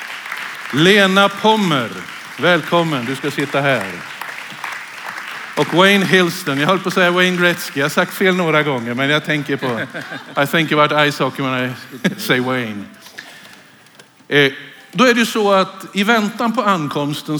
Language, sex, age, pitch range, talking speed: Swedish, male, 50-69, 135-195 Hz, 155 wpm